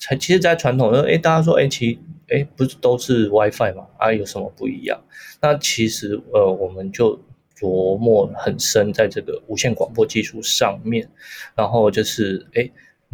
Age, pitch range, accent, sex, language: 20-39, 100-140 Hz, native, male, Chinese